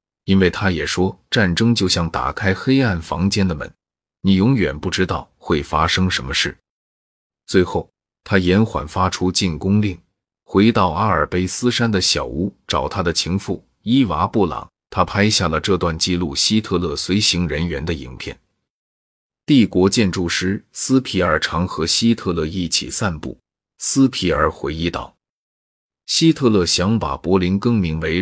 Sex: male